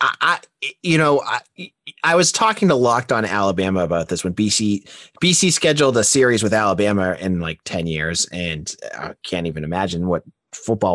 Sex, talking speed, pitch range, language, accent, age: male, 175 wpm, 105-155 Hz, English, American, 30-49